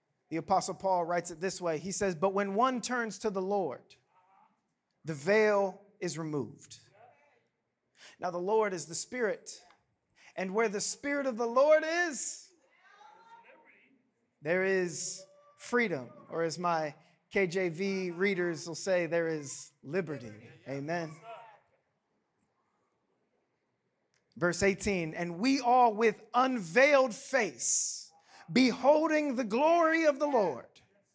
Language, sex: English, male